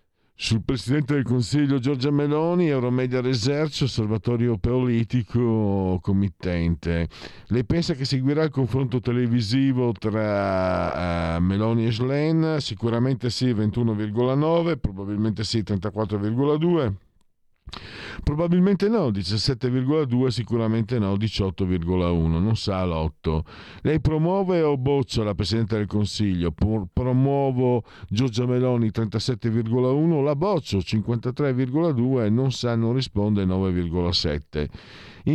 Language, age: Italian, 50-69